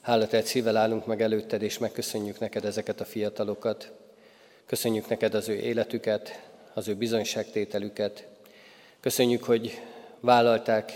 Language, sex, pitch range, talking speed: Hungarian, male, 110-120 Hz, 125 wpm